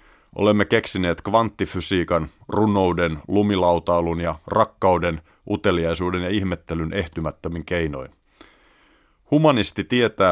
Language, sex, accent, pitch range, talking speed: Finnish, male, native, 80-100 Hz, 80 wpm